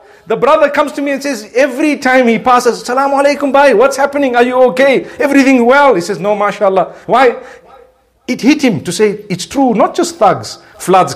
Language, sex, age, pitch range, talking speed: English, male, 50-69, 205-285 Hz, 195 wpm